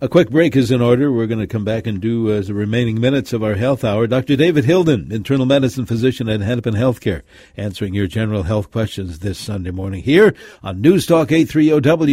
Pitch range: 100-130 Hz